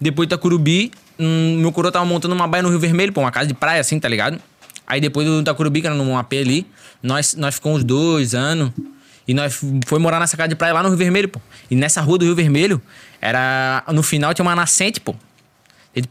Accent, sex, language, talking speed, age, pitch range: Brazilian, male, Portuguese, 230 wpm, 20-39, 125-160 Hz